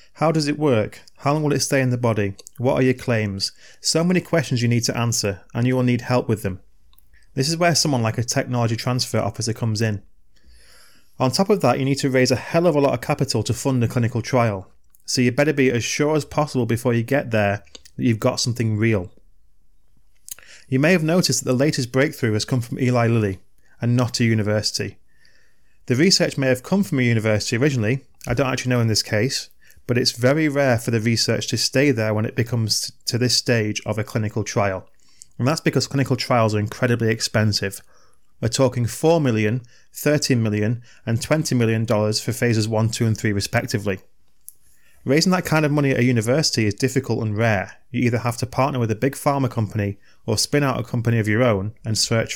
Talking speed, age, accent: 215 wpm, 30-49, British